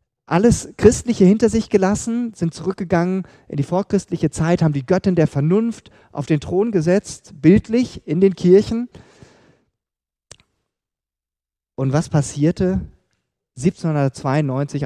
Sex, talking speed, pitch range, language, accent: male, 115 wpm, 115-155 Hz, German, German